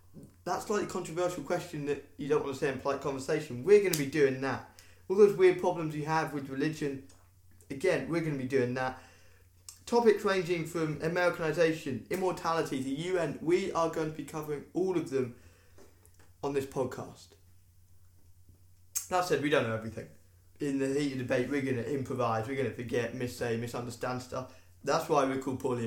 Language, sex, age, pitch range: English, male, 20-39, 95-155 Hz